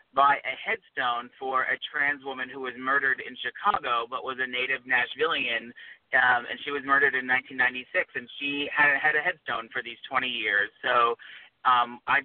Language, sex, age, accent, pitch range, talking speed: English, male, 30-49, American, 125-145 Hz, 175 wpm